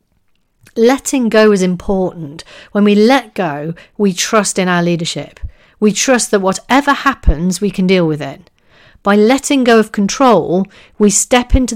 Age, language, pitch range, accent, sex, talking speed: 40-59, English, 175-225 Hz, British, female, 160 wpm